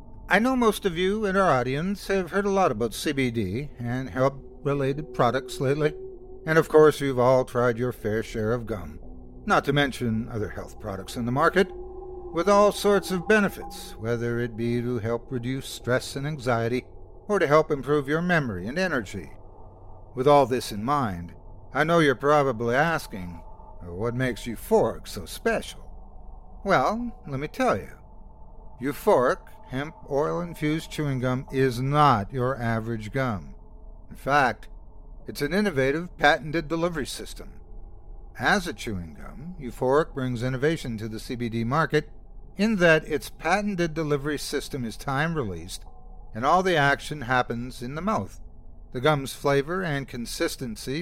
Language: English